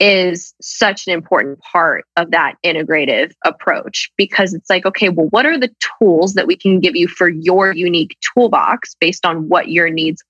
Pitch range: 170-195 Hz